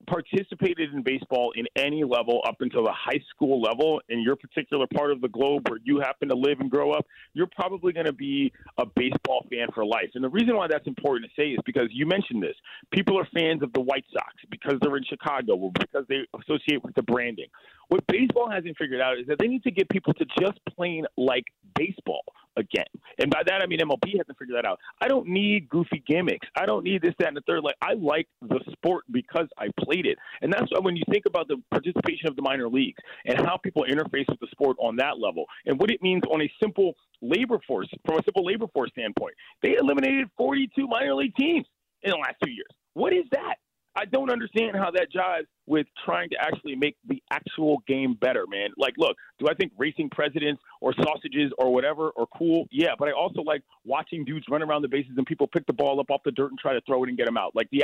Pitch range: 140-200 Hz